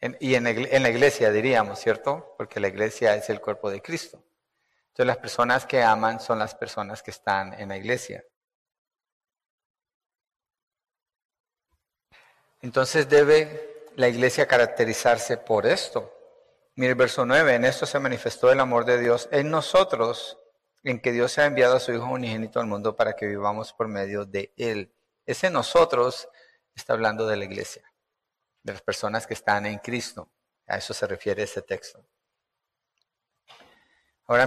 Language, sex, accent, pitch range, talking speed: Spanish, male, Mexican, 110-150 Hz, 155 wpm